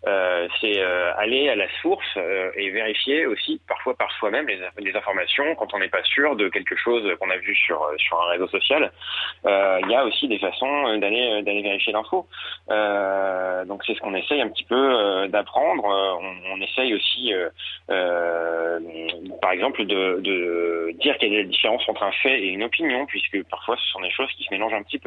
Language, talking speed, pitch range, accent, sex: French, 200 wpm, 95-110 Hz, French, male